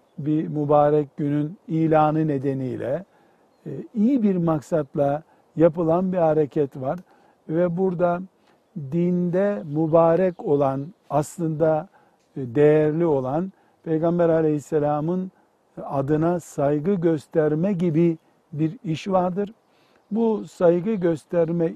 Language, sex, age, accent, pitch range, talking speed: Turkish, male, 60-79, native, 150-180 Hz, 90 wpm